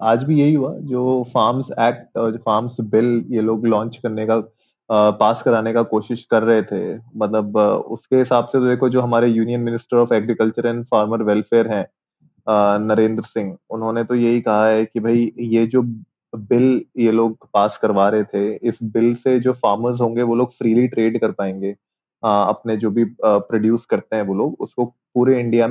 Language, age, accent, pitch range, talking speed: Hindi, 20-39, native, 110-125 Hz, 185 wpm